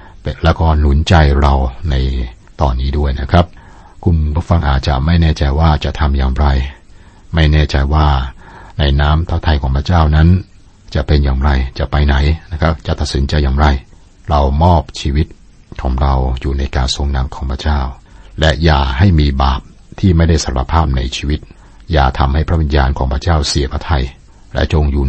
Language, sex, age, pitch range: Thai, male, 60-79, 70-85 Hz